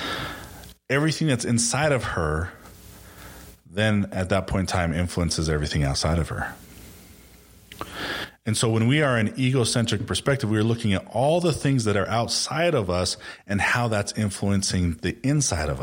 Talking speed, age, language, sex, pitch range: 165 wpm, 30-49, English, male, 85-110 Hz